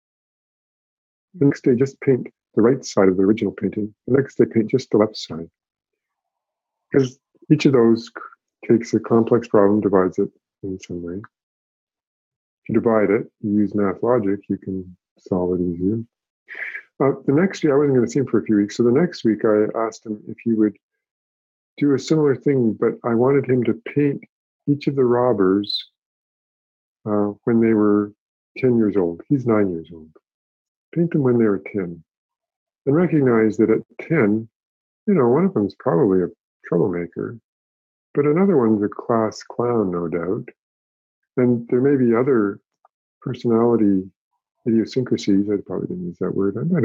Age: 50-69